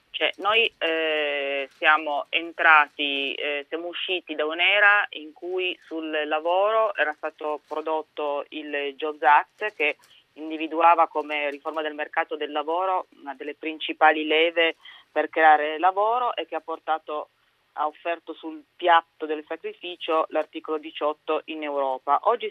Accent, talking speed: native, 135 wpm